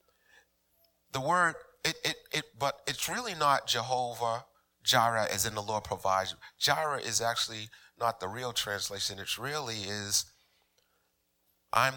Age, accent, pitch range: 30-49, American, 95-115 Hz